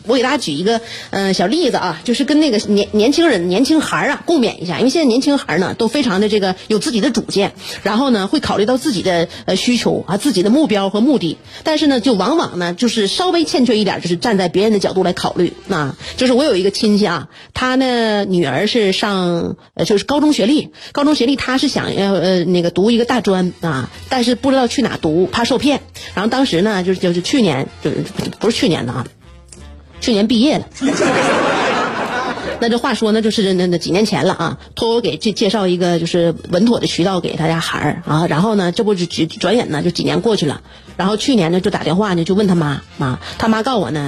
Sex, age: female, 30-49